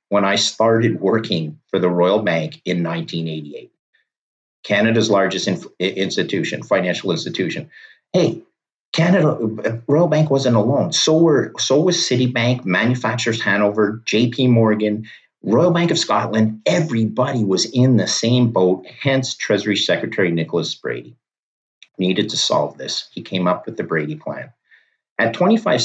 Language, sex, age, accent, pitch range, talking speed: English, male, 50-69, American, 95-135 Hz, 130 wpm